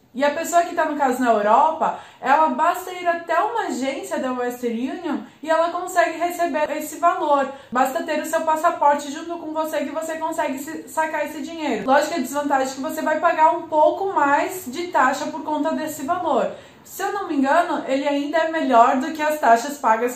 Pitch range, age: 250-320 Hz, 20-39